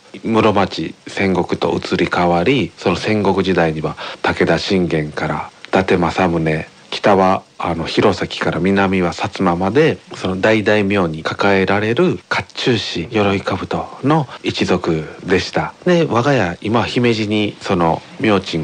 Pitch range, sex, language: 85-110 Hz, male, Japanese